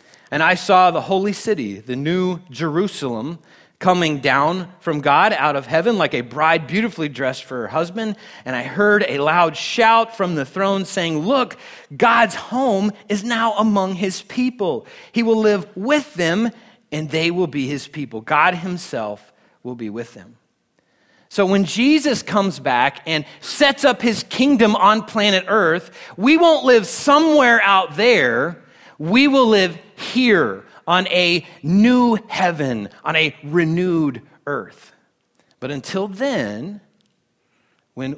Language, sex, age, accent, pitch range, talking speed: English, male, 30-49, American, 150-215 Hz, 150 wpm